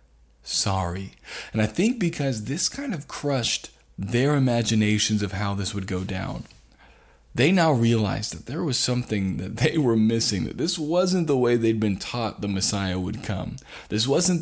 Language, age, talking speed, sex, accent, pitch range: English, 20-39, 175 wpm, male, American, 95-140 Hz